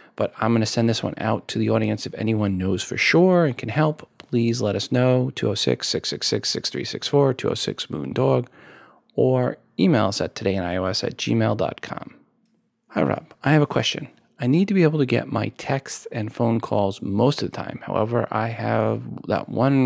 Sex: male